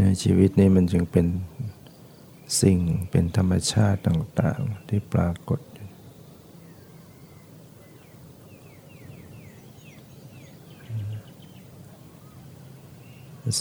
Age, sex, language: 60-79, male, Thai